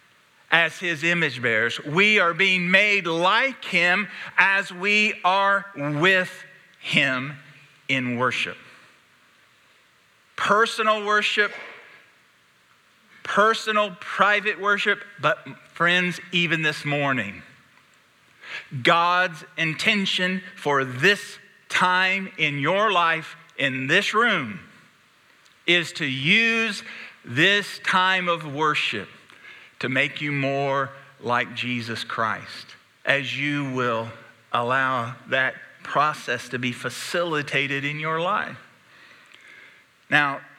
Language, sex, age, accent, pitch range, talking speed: English, male, 50-69, American, 140-190 Hz, 95 wpm